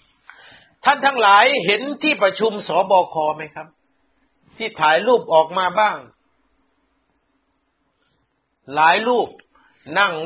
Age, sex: 60-79, male